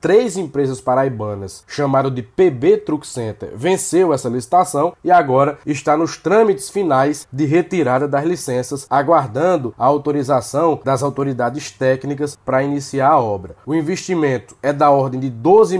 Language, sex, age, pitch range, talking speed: Portuguese, male, 20-39, 135-175 Hz, 145 wpm